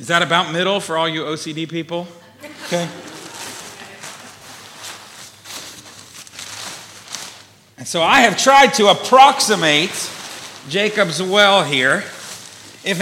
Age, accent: 40-59, American